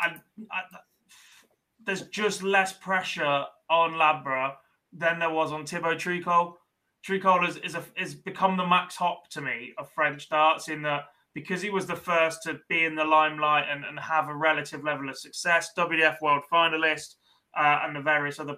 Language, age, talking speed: English, 20-39, 185 wpm